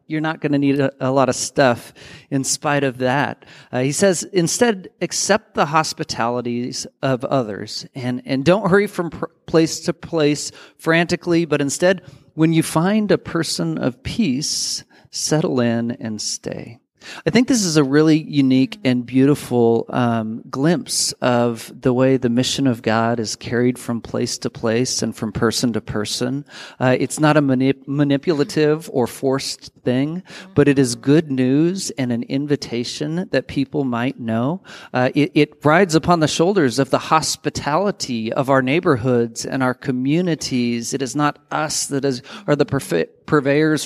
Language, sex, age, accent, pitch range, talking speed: English, male, 40-59, American, 125-160 Hz, 160 wpm